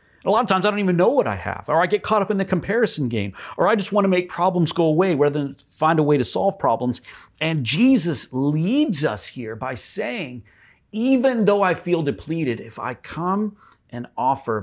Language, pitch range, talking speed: English, 100-155 Hz, 220 wpm